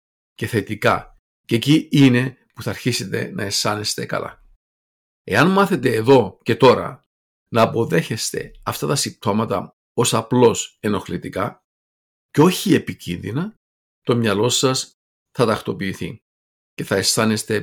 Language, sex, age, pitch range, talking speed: Greek, male, 50-69, 105-140 Hz, 120 wpm